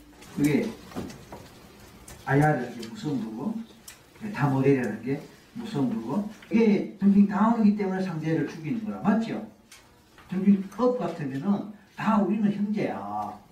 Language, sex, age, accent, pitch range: Korean, male, 40-59, native, 160-215 Hz